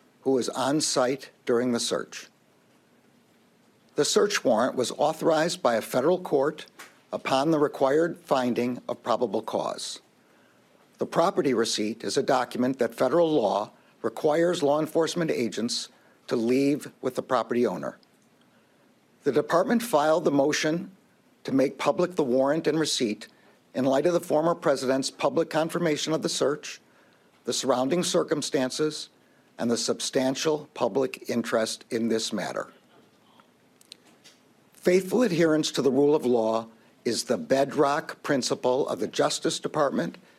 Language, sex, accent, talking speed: English, male, American, 135 wpm